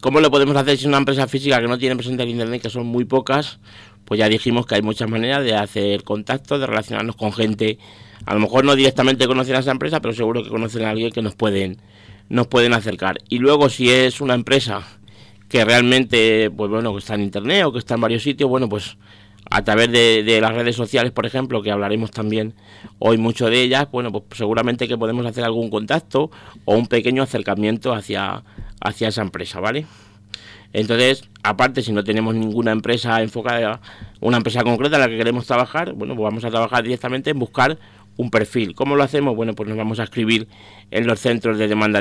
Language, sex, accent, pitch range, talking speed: Spanish, male, Spanish, 105-125 Hz, 215 wpm